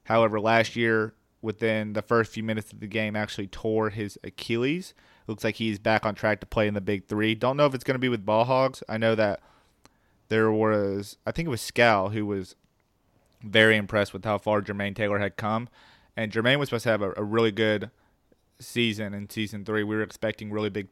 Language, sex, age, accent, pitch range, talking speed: English, male, 30-49, American, 105-115 Hz, 225 wpm